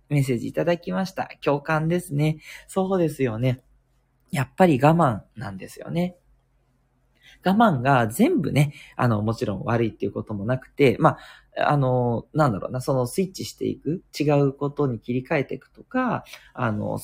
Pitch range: 130-200 Hz